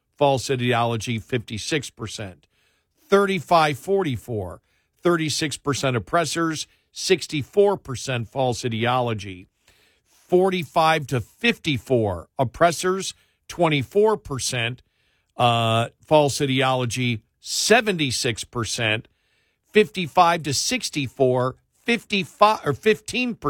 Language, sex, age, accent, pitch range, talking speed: English, male, 50-69, American, 120-165 Hz, 60 wpm